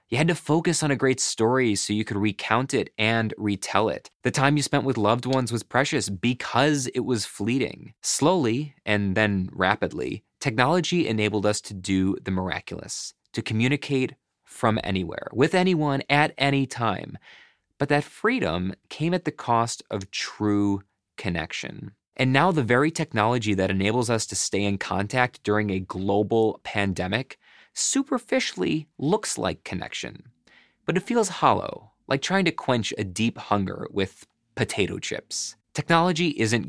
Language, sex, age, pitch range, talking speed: English, male, 20-39, 105-145 Hz, 155 wpm